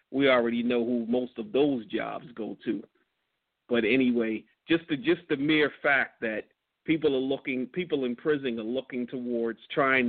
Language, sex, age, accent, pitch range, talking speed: English, male, 40-59, American, 115-130 Hz, 165 wpm